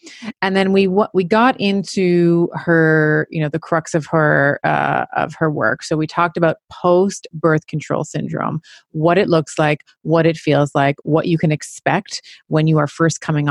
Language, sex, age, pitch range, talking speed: English, female, 30-49, 150-190 Hz, 185 wpm